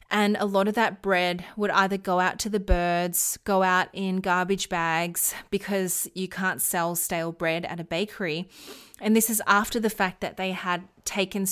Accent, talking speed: Australian, 195 wpm